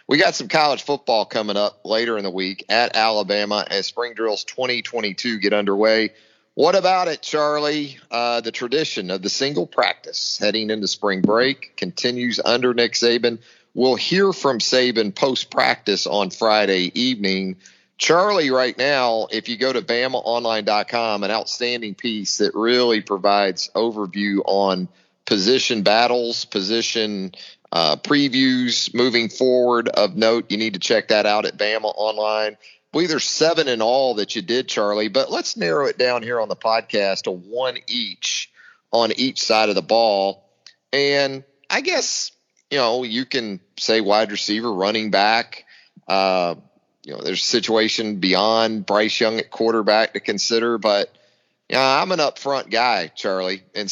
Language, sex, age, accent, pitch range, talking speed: English, male, 40-59, American, 105-125 Hz, 160 wpm